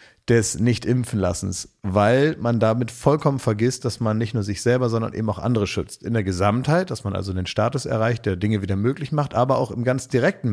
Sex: male